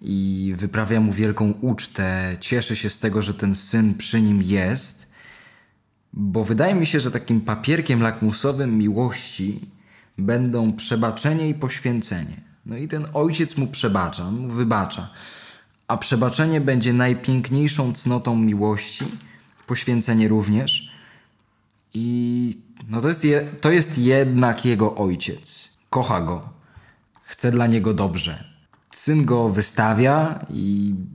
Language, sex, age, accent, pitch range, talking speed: Polish, male, 20-39, native, 110-135 Hz, 120 wpm